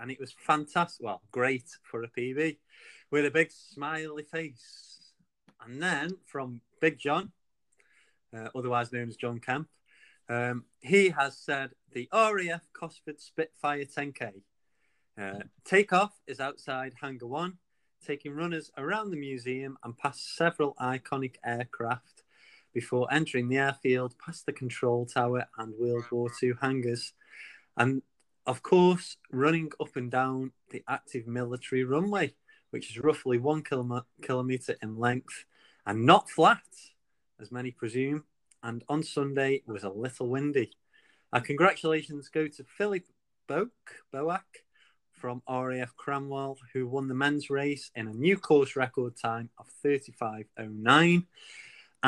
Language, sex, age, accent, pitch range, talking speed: English, male, 30-49, British, 125-155 Hz, 135 wpm